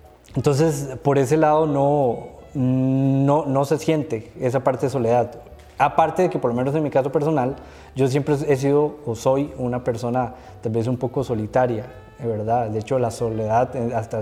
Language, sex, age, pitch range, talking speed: Spanish, male, 20-39, 115-140 Hz, 180 wpm